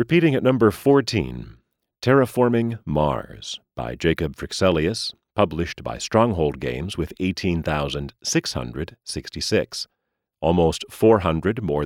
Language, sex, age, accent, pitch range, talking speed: English, male, 40-59, American, 75-110 Hz, 90 wpm